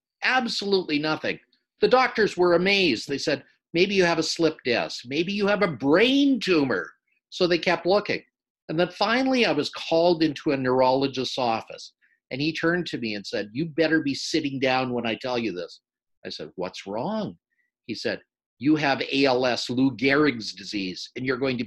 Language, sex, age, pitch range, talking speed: English, male, 50-69, 120-175 Hz, 185 wpm